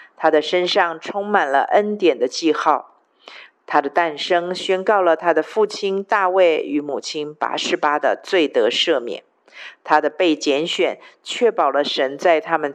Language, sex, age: Chinese, female, 50-69